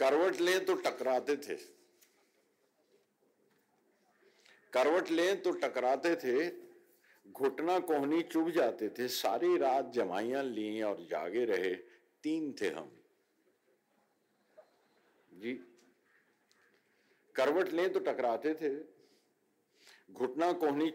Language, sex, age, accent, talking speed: Hindi, male, 50-69, native, 95 wpm